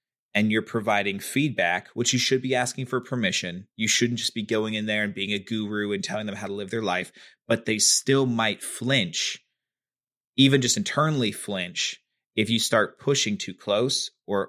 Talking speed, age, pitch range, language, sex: 190 wpm, 30-49, 105-130 Hz, English, male